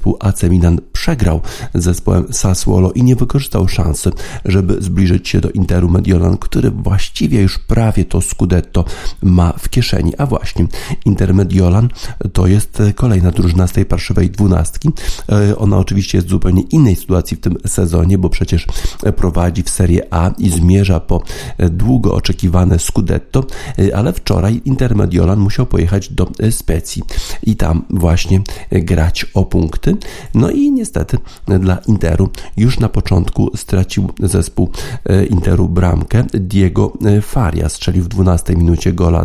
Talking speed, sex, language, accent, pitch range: 140 wpm, male, Polish, native, 90-105 Hz